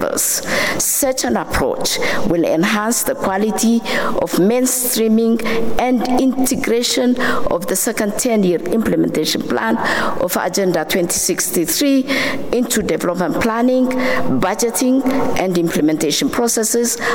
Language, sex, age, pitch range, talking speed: English, female, 60-79, 190-255 Hz, 95 wpm